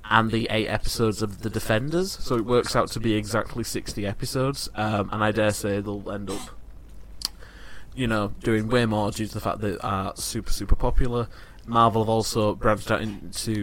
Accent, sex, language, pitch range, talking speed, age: British, male, English, 105-120 Hz, 200 wpm, 20-39